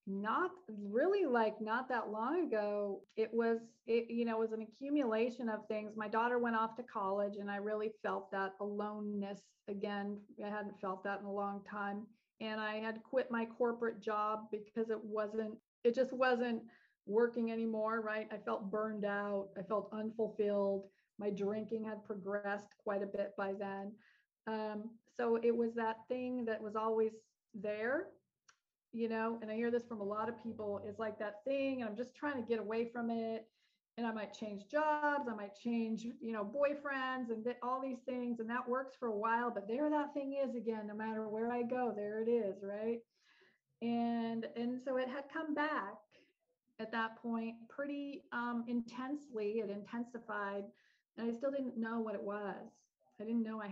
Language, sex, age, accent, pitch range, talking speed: English, female, 40-59, American, 210-235 Hz, 185 wpm